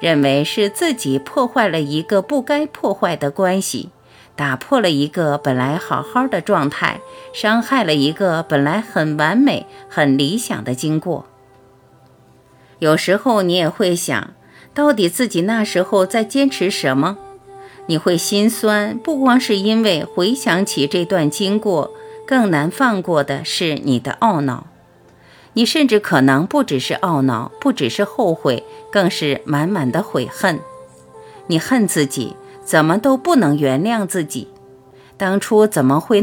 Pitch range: 150-250 Hz